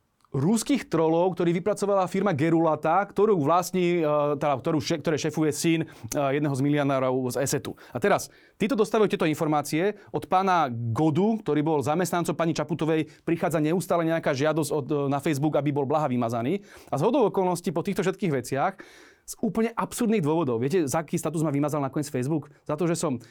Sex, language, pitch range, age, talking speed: male, Slovak, 145-180 Hz, 30-49, 170 wpm